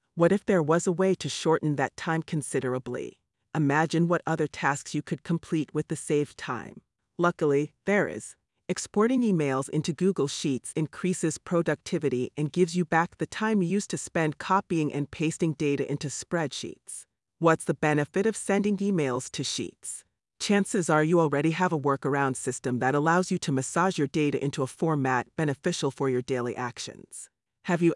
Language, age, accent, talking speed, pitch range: English, 40-59, American, 175 wpm, 140-175 Hz